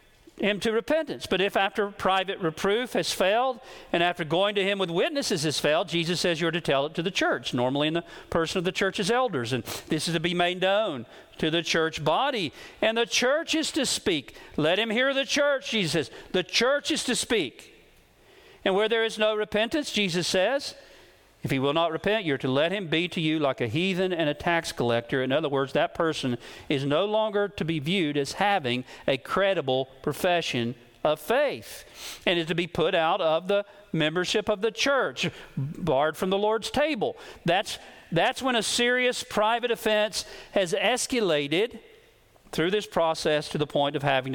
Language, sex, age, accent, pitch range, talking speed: English, male, 50-69, American, 155-225 Hz, 195 wpm